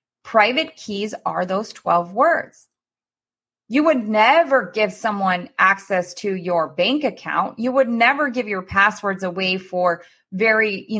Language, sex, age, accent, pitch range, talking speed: English, female, 20-39, American, 190-255 Hz, 140 wpm